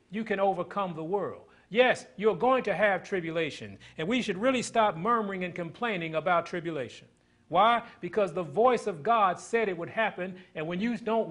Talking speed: 185 wpm